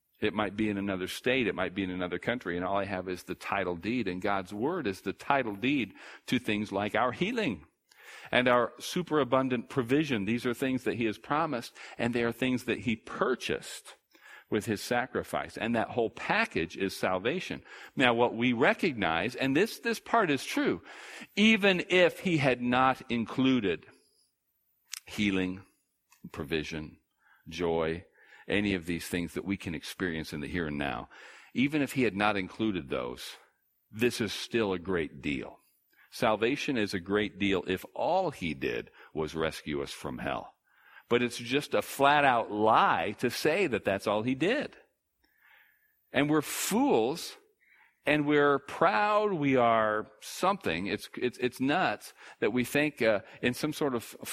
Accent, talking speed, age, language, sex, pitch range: American, 170 wpm, 50-69, English, male, 95-130 Hz